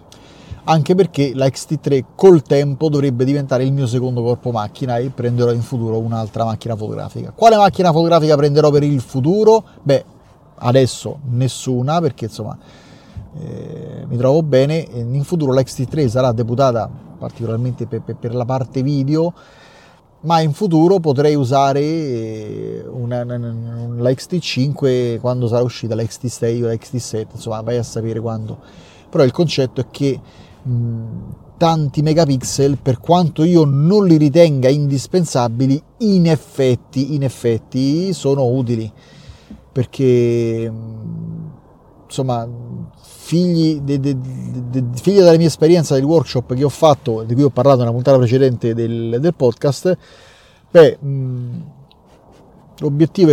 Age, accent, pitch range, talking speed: 30-49, native, 120-155 Hz, 140 wpm